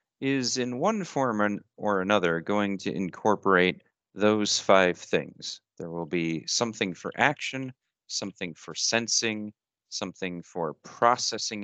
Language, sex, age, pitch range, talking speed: English, male, 40-59, 85-105 Hz, 125 wpm